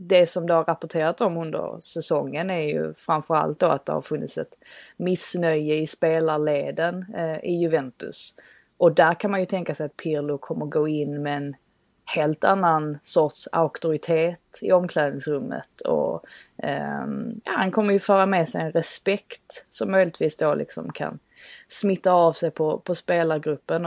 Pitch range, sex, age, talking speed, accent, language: 150-180 Hz, female, 20-39, 160 wpm, native, Swedish